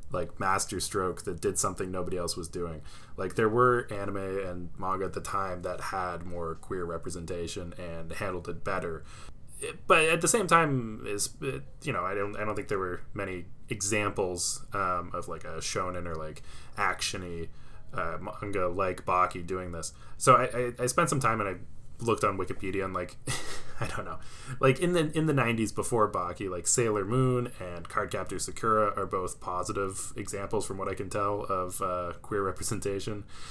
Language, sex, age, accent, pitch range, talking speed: English, male, 20-39, American, 90-120 Hz, 185 wpm